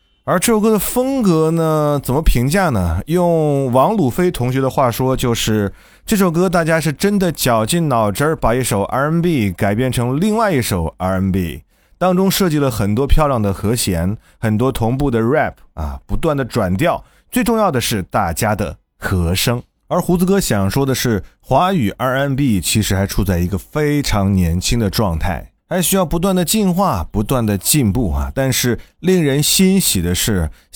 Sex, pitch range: male, 100-170 Hz